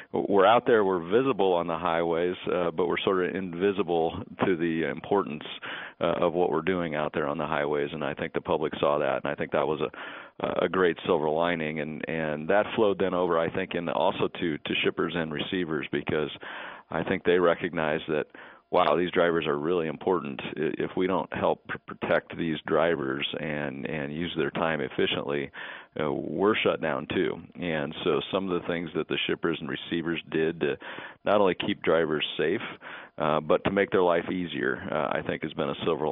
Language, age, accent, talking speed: English, 40-59, American, 200 wpm